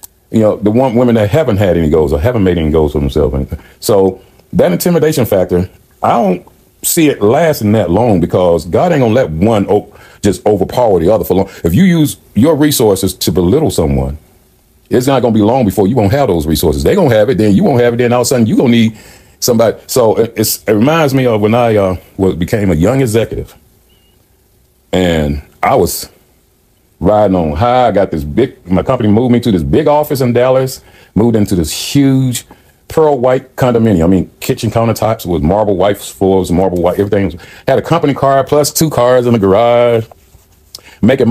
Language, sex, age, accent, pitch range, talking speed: English, male, 40-59, American, 90-125 Hz, 215 wpm